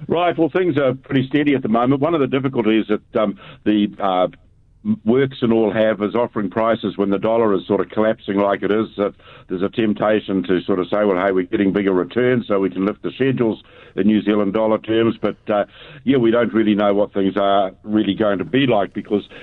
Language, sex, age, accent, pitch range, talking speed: English, male, 60-79, Australian, 100-120 Hz, 240 wpm